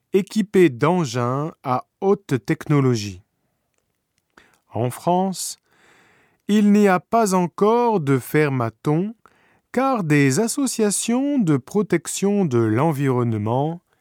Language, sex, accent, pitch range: Japanese, male, French, 125-180 Hz